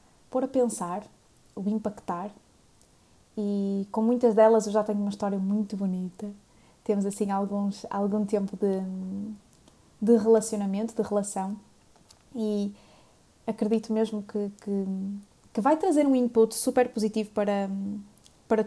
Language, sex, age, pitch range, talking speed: Portuguese, female, 20-39, 200-230 Hz, 120 wpm